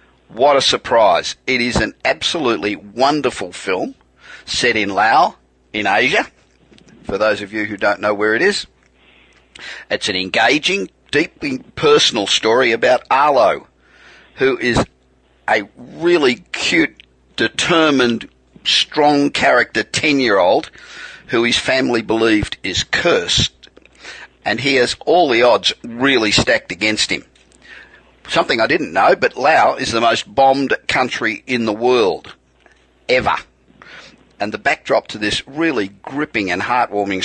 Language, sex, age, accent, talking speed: English, male, 50-69, Australian, 130 wpm